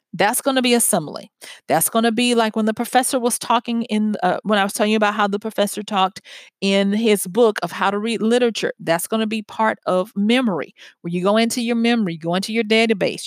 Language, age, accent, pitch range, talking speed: English, 40-59, American, 185-230 Hz, 235 wpm